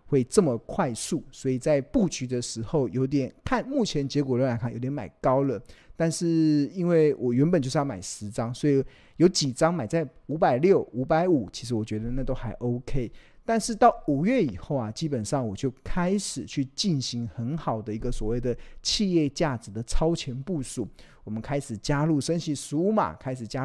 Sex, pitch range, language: male, 120-170 Hz, Chinese